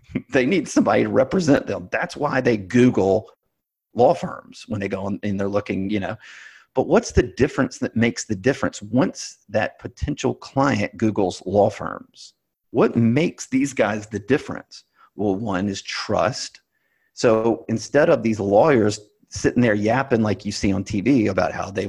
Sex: male